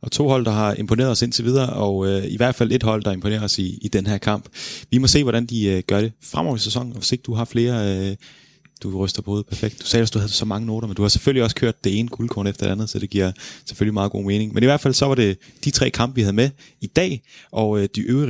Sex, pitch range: male, 100-125 Hz